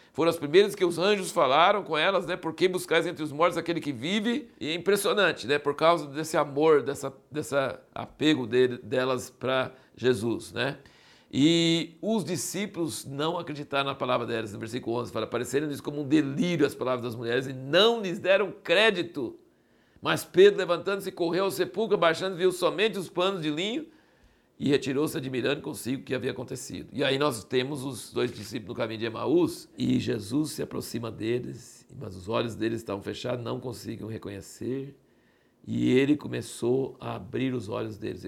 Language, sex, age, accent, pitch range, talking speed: Portuguese, male, 60-79, Brazilian, 120-170 Hz, 175 wpm